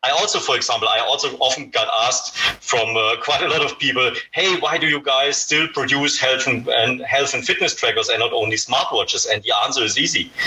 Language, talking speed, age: English, 225 wpm, 40-59